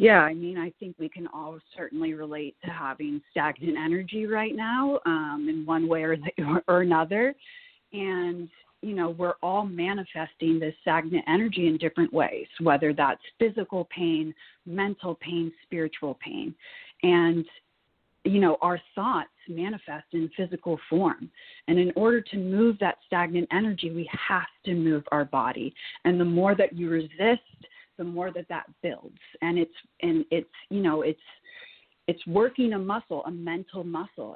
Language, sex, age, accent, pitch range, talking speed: English, female, 30-49, American, 165-210 Hz, 160 wpm